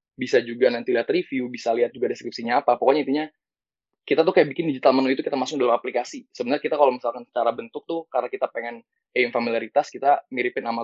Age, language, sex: 20-39, Indonesian, male